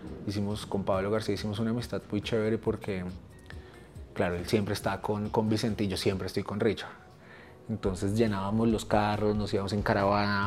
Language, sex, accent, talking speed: Spanish, male, Colombian, 180 wpm